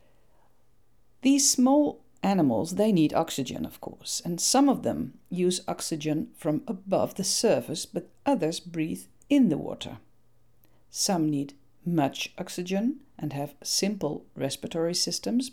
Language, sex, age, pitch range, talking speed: Dutch, female, 50-69, 140-235 Hz, 130 wpm